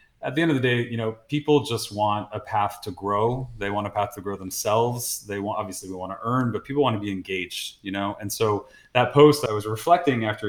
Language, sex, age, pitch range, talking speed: English, male, 30-49, 105-125 Hz, 255 wpm